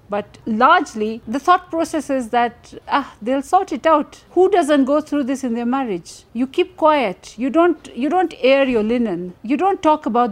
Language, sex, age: English, female, 50-69